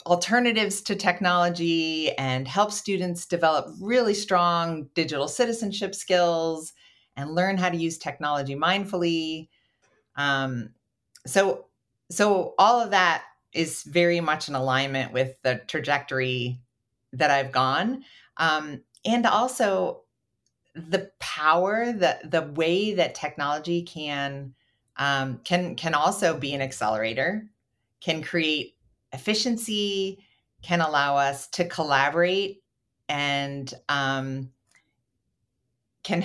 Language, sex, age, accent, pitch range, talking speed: English, female, 40-59, American, 130-190 Hz, 110 wpm